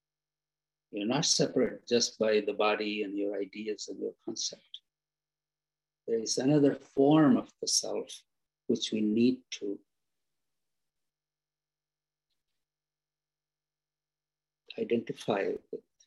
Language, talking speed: English, 95 wpm